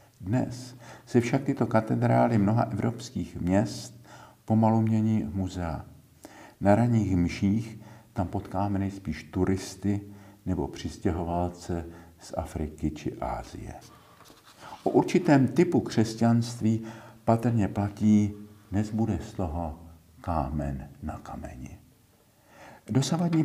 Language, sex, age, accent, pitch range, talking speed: Czech, male, 50-69, native, 90-115 Hz, 90 wpm